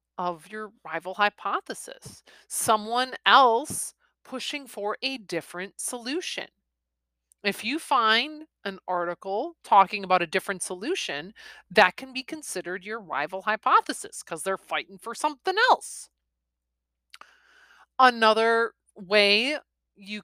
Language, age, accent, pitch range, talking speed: English, 30-49, American, 165-230 Hz, 110 wpm